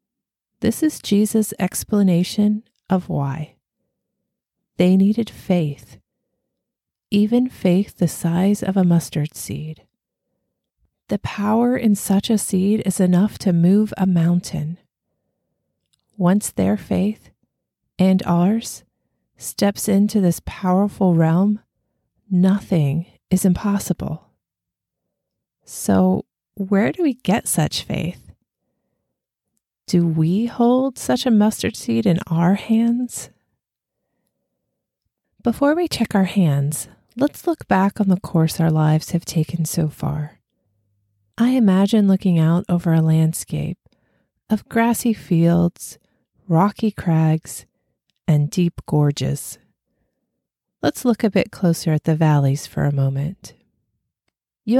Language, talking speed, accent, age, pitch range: English, 115 wpm, American, 30-49, 160-210 Hz